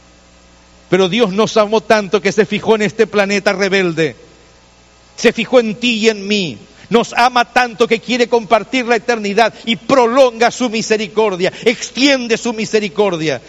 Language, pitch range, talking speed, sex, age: Spanish, 145-230 Hz, 150 wpm, male, 50-69